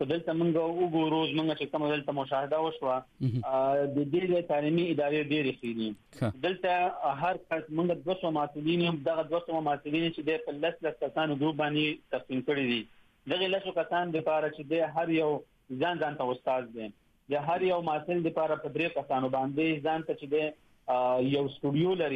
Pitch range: 145-175 Hz